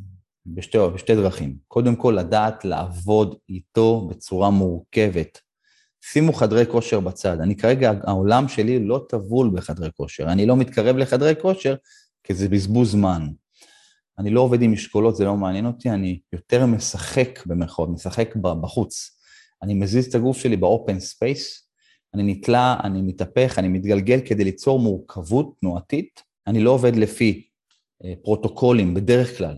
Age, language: 30-49, Hebrew